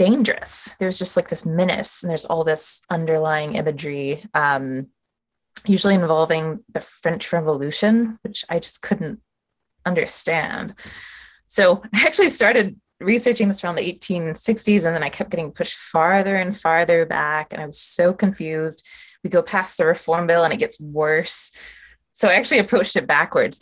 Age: 20-39